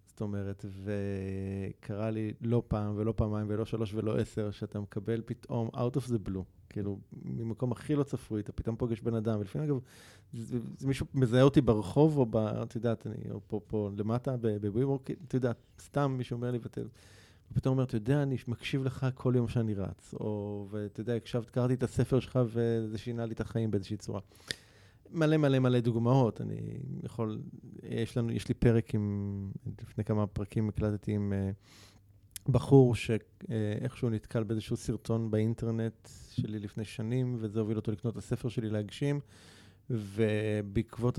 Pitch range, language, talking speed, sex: 105-125 Hz, Hebrew, 165 wpm, male